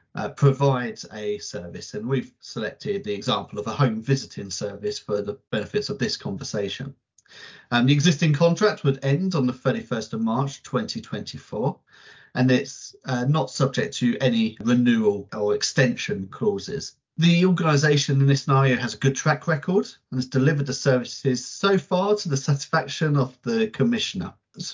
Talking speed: 165 wpm